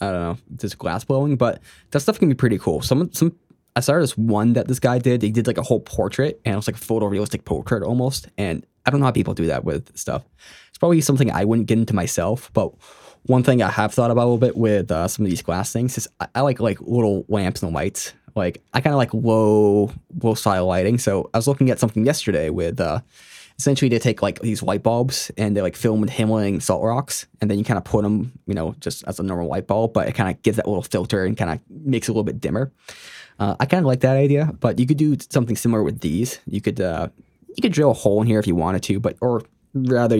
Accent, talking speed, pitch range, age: American, 265 wpm, 100-125 Hz, 20-39